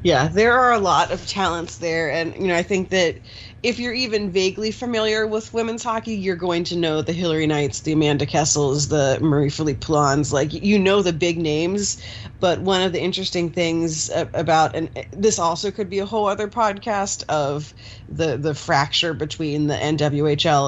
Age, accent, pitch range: 30-49, American, 140-175 Hz